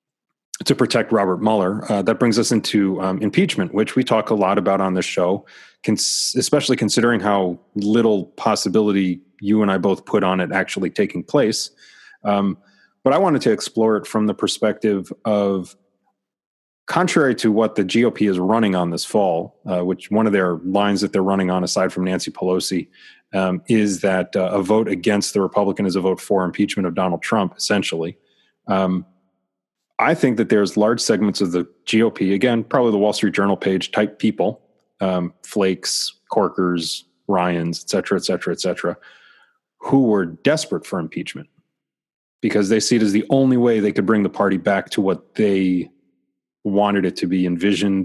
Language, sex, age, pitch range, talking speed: English, male, 30-49, 95-110 Hz, 180 wpm